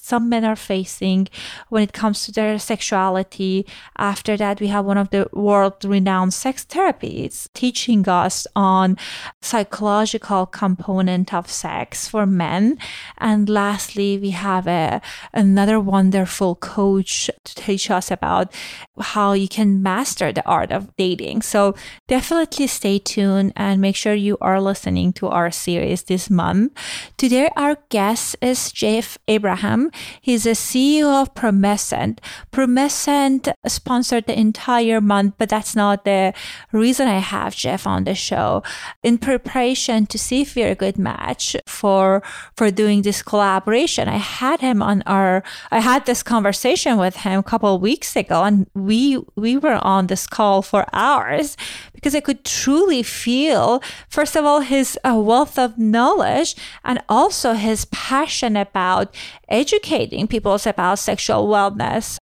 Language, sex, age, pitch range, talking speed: English, female, 30-49, 195-245 Hz, 150 wpm